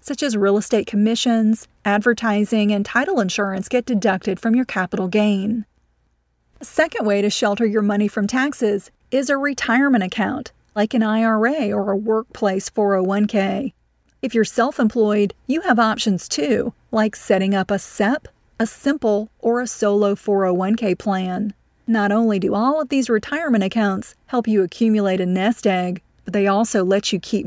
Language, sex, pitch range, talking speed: English, female, 200-235 Hz, 160 wpm